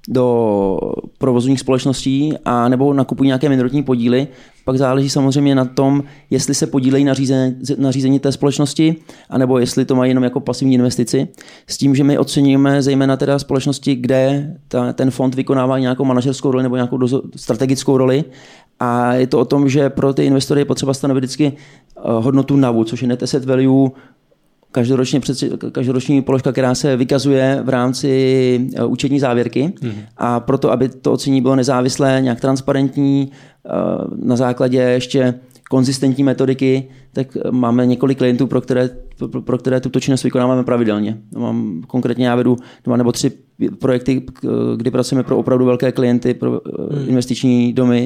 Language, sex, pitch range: Czech, male, 125-135 Hz